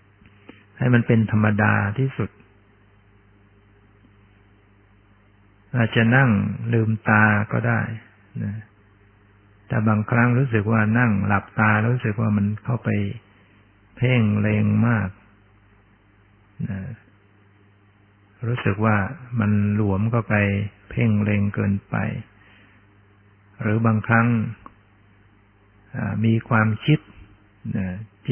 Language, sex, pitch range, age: Thai, male, 100-110 Hz, 60-79